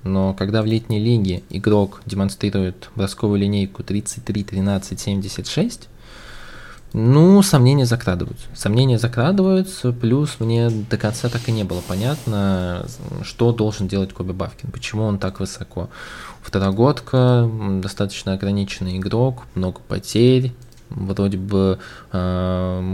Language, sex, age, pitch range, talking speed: Russian, male, 20-39, 95-120 Hz, 110 wpm